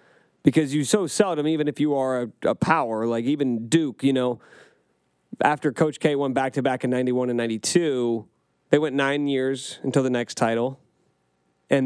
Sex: male